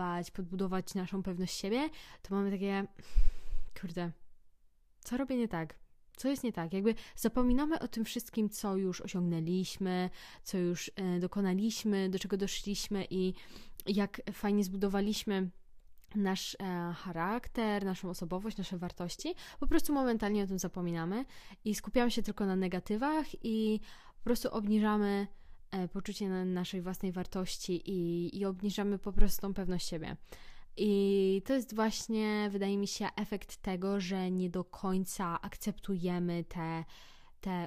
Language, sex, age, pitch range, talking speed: Polish, female, 10-29, 185-215 Hz, 130 wpm